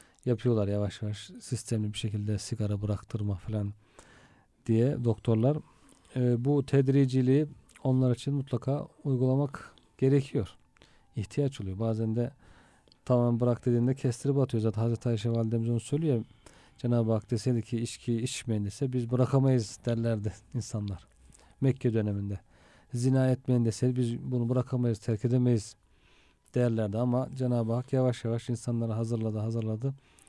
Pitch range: 110-135 Hz